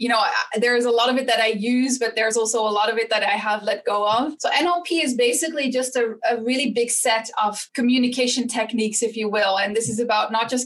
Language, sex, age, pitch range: English, female, 20-39, 215-255 Hz